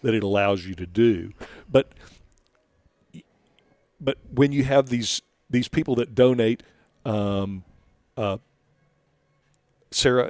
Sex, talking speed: male, 110 wpm